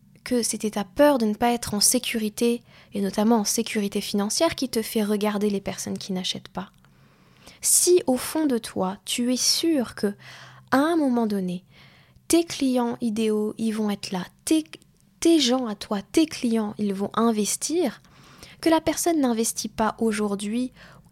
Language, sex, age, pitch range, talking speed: French, female, 10-29, 200-245 Hz, 175 wpm